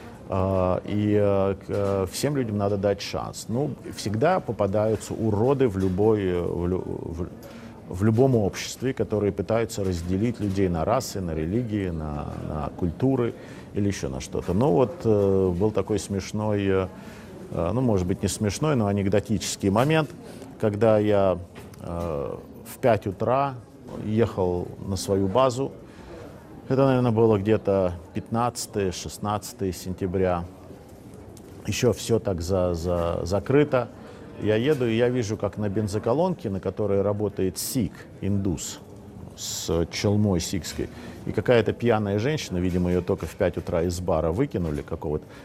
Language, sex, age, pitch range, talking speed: Russian, male, 40-59, 95-115 Hz, 120 wpm